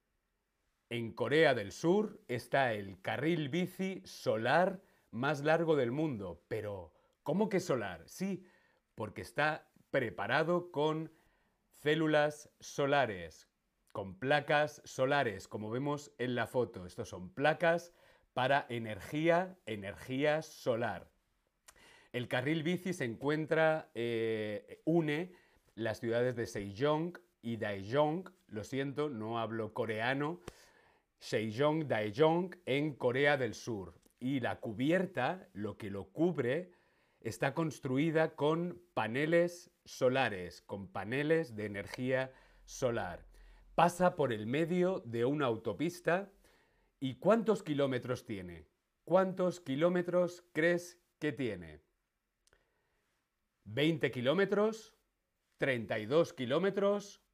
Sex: male